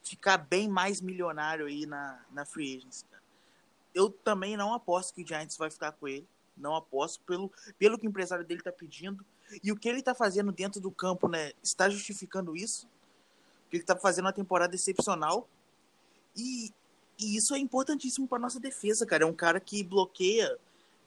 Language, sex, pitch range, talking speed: Portuguese, male, 175-210 Hz, 185 wpm